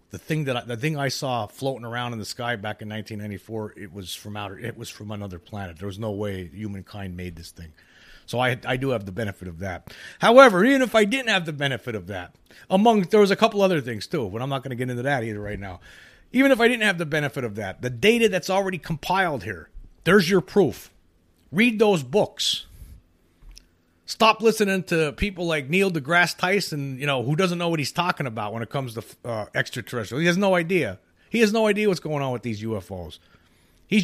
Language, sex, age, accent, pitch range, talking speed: English, male, 40-59, American, 110-185 Hz, 225 wpm